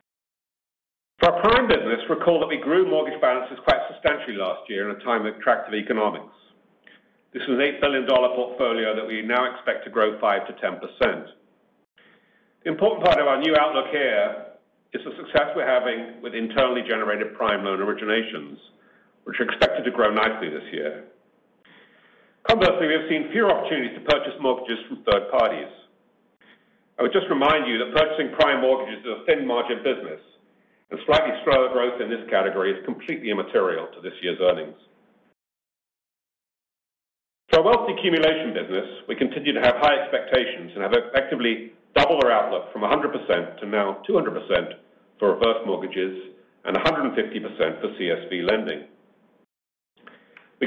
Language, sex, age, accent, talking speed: English, male, 50-69, British, 155 wpm